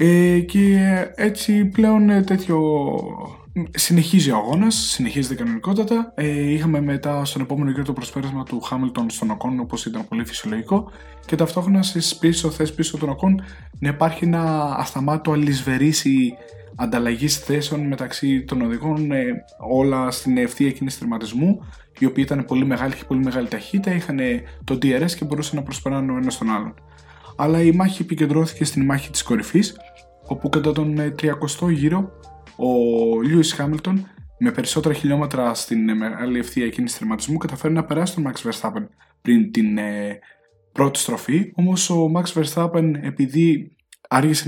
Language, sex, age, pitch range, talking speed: Greek, male, 20-39, 130-180 Hz, 145 wpm